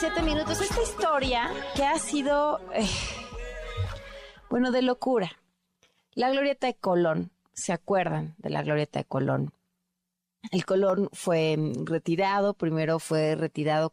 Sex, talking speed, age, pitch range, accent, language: female, 125 wpm, 30-49, 150-195 Hz, Mexican, Spanish